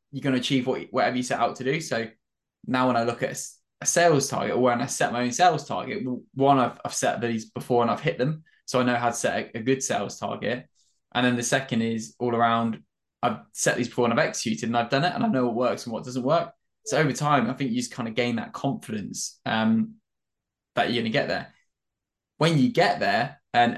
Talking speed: 245 wpm